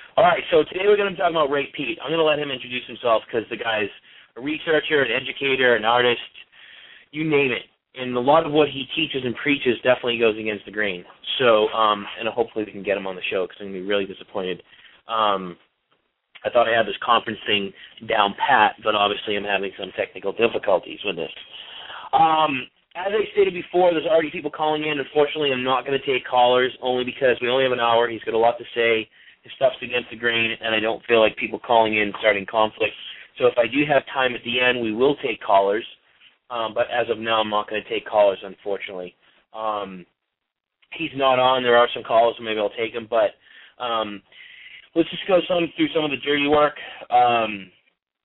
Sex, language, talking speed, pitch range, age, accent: male, English, 220 wpm, 110-150 Hz, 30-49, American